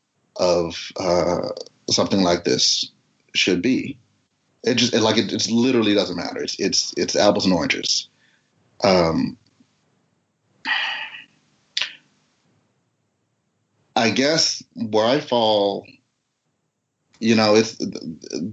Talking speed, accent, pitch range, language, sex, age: 105 wpm, American, 100-120 Hz, English, male, 30-49